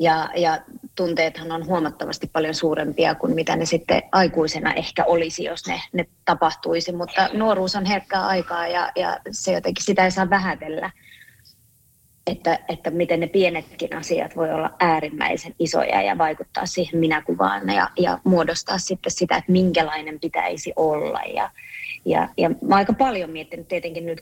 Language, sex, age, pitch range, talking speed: Finnish, female, 20-39, 160-180 Hz, 155 wpm